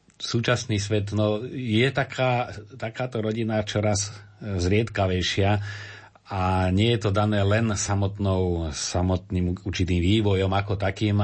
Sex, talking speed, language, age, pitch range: male, 110 wpm, Slovak, 40-59, 90-105 Hz